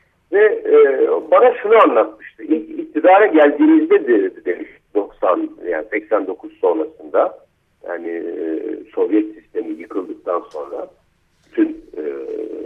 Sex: male